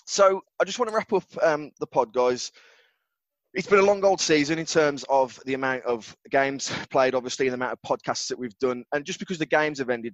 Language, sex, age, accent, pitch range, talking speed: English, male, 20-39, British, 115-145 Hz, 245 wpm